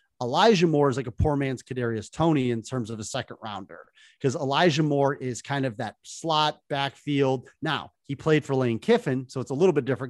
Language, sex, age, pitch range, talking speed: English, male, 30-49, 120-140 Hz, 215 wpm